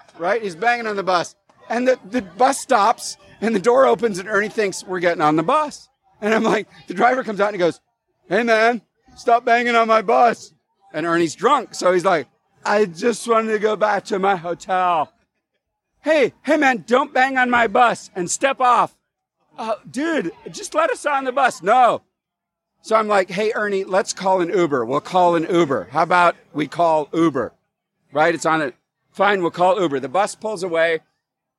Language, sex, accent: English, male, American